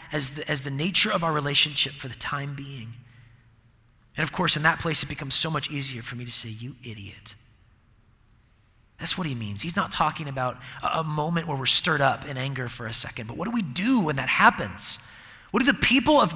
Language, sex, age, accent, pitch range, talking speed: English, male, 30-49, American, 115-165 Hz, 220 wpm